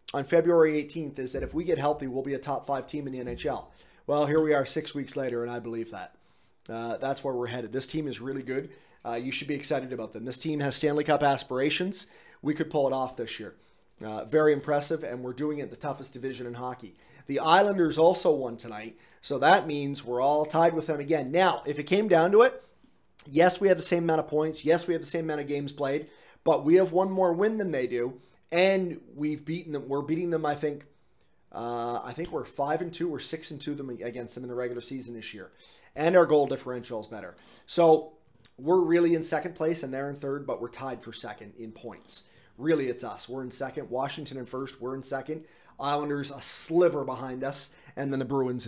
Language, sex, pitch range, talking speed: English, male, 125-160 Hz, 235 wpm